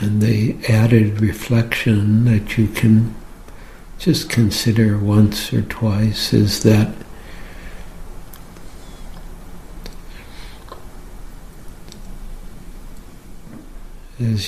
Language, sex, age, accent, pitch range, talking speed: English, male, 60-79, American, 95-115 Hz, 60 wpm